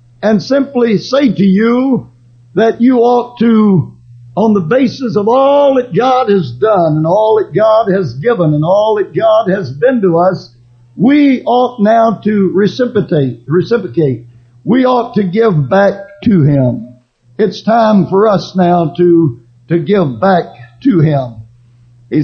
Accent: American